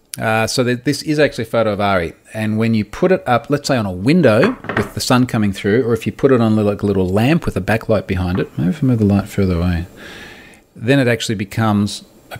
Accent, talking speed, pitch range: Australian, 255 wpm, 100-130 Hz